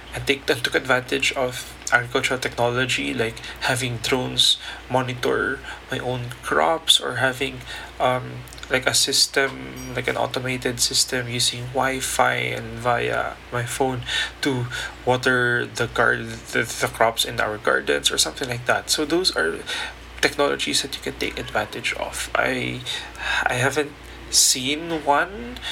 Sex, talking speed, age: male, 140 wpm, 20-39